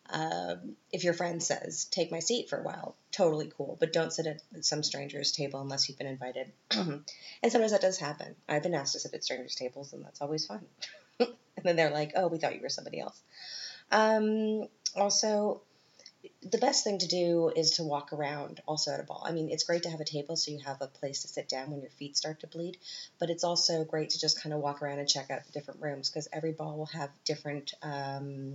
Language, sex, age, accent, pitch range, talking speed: English, female, 30-49, American, 140-170 Hz, 235 wpm